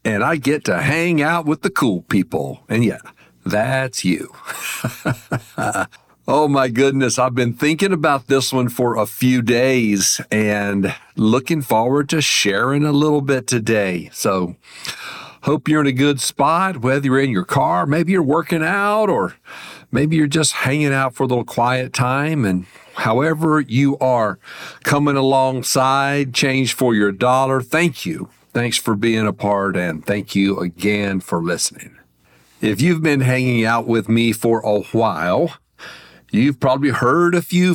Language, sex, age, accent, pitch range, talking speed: English, male, 50-69, American, 110-150 Hz, 160 wpm